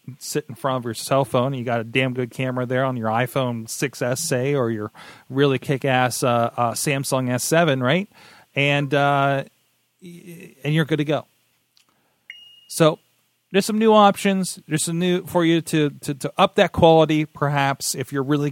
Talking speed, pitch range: 170 wpm, 125-160 Hz